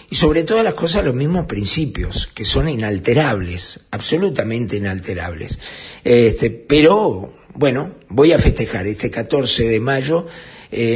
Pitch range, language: 115-145 Hz, Spanish